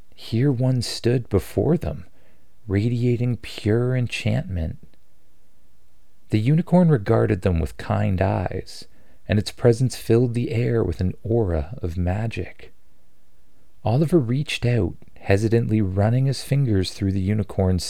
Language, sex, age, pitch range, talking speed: English, male, 40-59, 90-120 Hz, 120 wpm